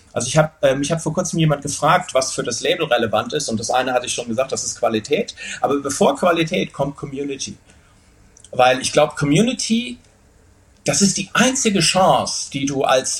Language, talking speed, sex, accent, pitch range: German, 195 wpm, male, German, 110-185 Hz